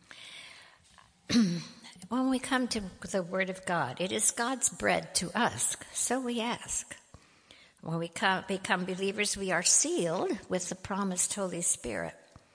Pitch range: 150-180 Hz